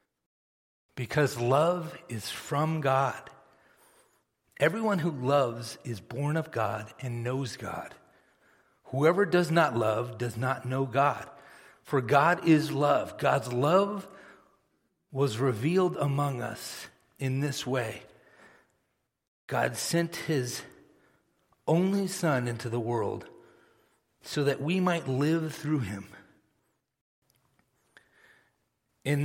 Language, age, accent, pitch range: English, 40-59, American, 125-165 Hz